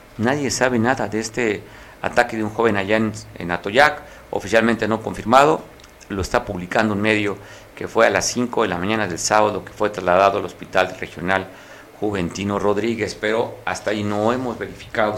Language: Spanish